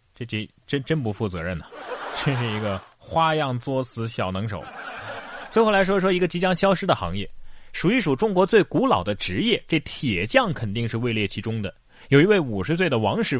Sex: male